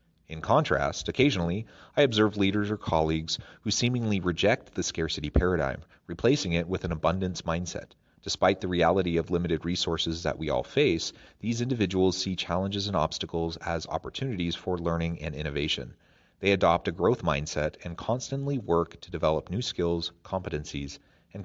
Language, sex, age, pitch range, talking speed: English, male, 30-49, 80-100 Hz, 155 wpm